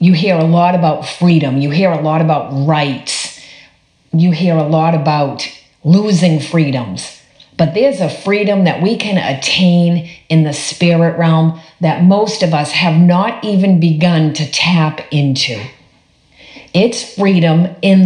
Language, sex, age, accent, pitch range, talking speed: English, female, 50-69, American, 150-195 Hz, 150 wpm